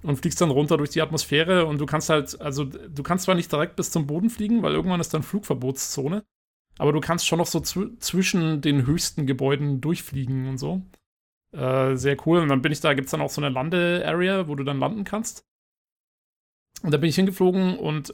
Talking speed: 220 wpm